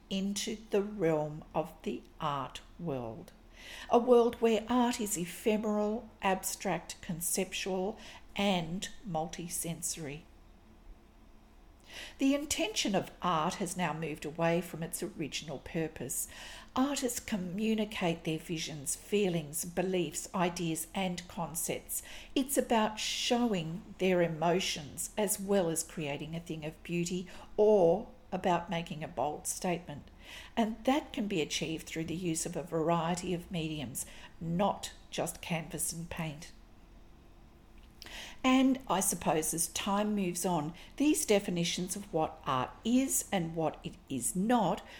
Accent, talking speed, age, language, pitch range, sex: Australian, 125 wpm, 50-69, English, 165-210 Hz, female